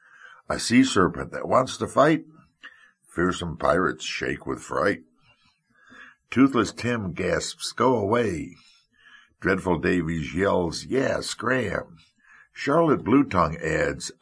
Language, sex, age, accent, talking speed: English, male, 60-79, American, 110 wpm